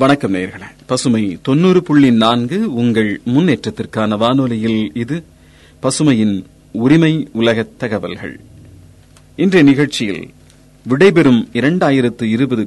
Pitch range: 110-145 Hz